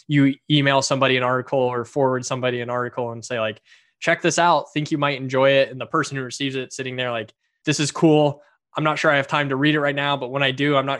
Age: 10-29